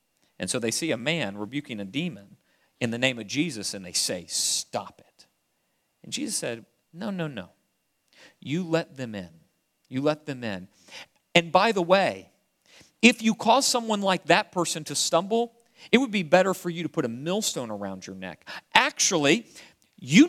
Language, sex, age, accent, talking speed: English, male, 40-59, American, 180 wpm